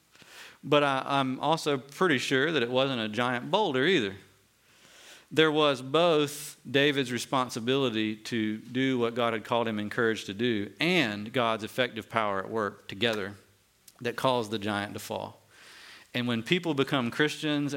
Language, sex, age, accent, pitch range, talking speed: English, male, 50-69, American, 105-135 Hz, 150 wpm